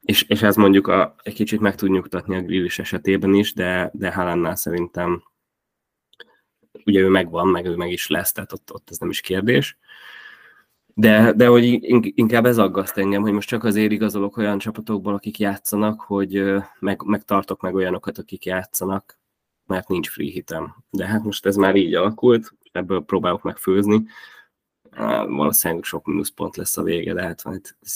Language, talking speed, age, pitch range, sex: Hungarian, 170 wpm, 20-39, 95-110 Hz, male